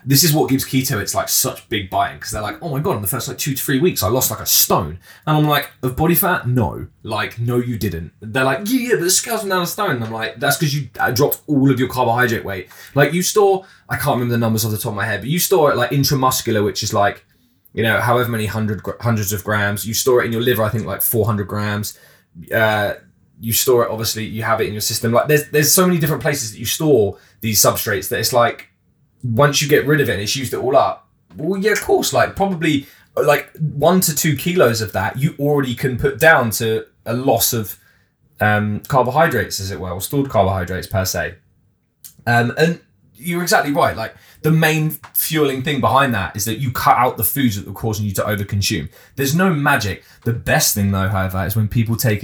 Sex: male